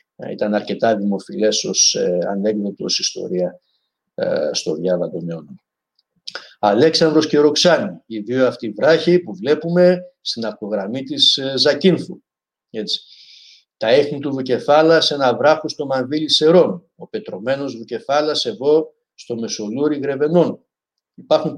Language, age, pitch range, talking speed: Greek, 50-69, 110-165 Hz, 120 wpm